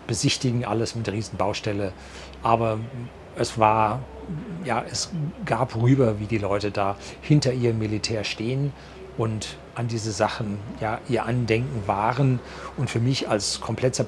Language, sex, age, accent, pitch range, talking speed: German, male, 40-59, German, 100-125 Hz, 140 wpm